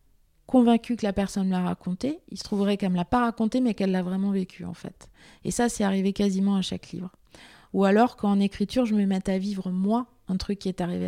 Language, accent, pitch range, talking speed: French, French, 180-205 Hz, 250 wpm